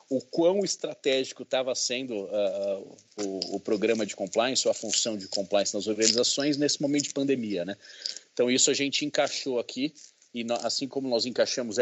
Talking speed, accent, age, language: 180 wpm, Brazilian, 40-59, English